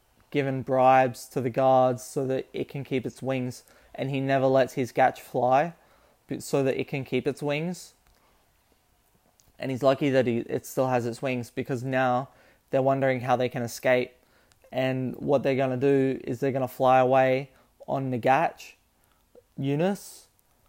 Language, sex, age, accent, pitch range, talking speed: English, male, 20-39, Australian, 130-140 Hz, 170 wpm